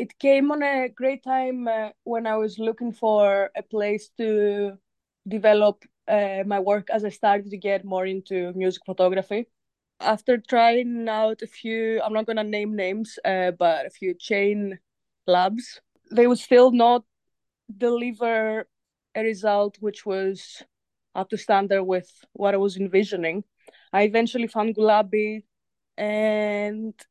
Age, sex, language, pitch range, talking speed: 20-39, female, English, 200-230 Hz, 150 wpm